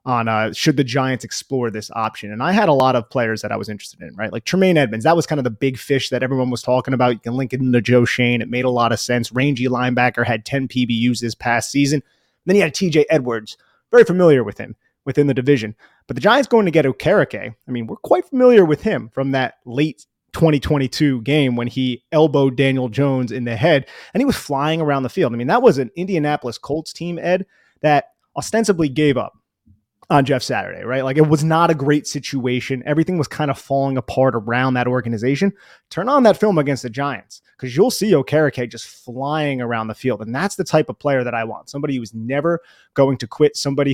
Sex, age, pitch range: male, 30-49, 125-150 Hz